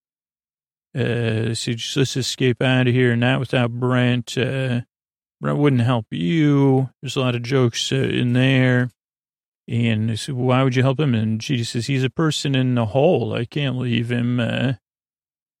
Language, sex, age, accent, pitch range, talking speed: English, male, 40-59, American, 115-130 Hz, 175 wpm